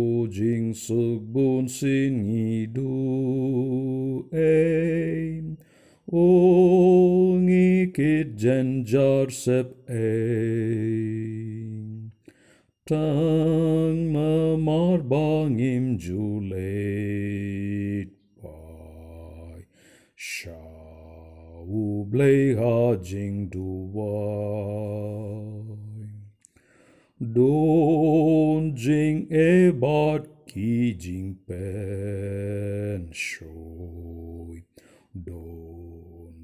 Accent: Indian